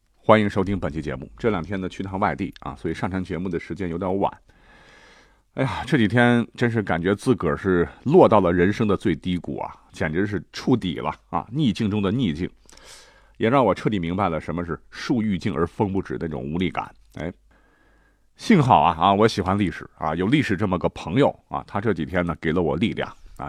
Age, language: 50-69, Chinese